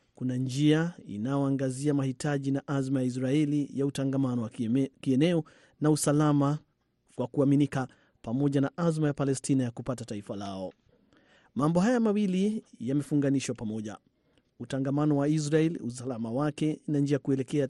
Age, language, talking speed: 30-49, Swahili, 130 wpm